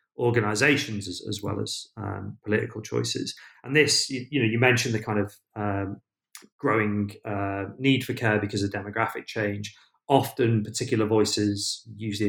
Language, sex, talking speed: English, male, 155 wpm